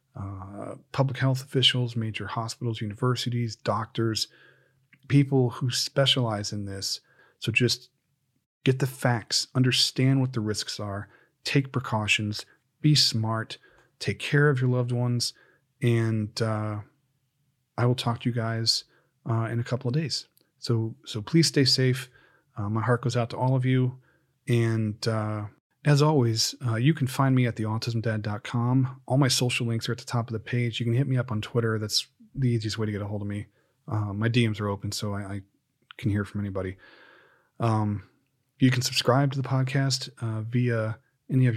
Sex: male